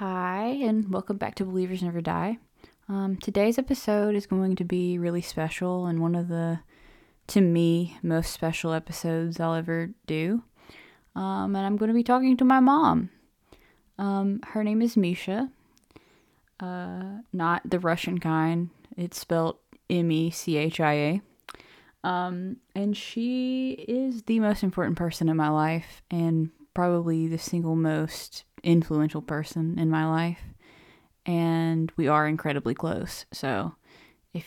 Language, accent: English, American